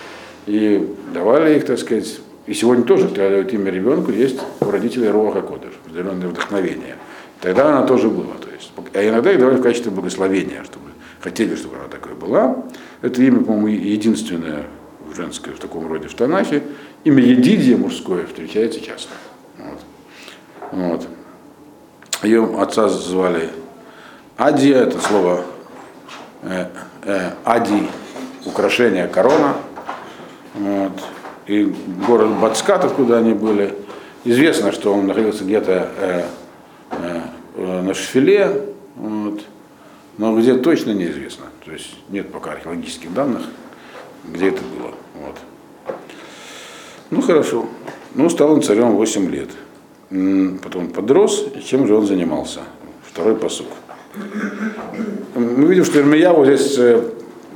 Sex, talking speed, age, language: male, 115 wpm, 50-69, Russian